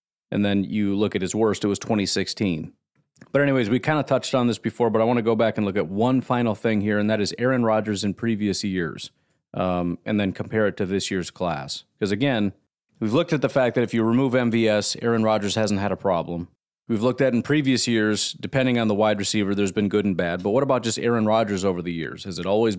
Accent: American